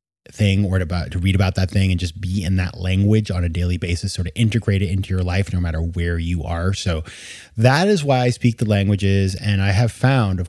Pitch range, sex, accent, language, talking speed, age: 90-110 Hz, male, American, English, 250 wpm, 30-49